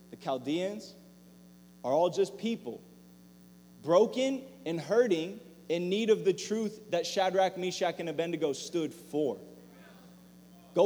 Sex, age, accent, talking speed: male, 20-39, American, 115 wpm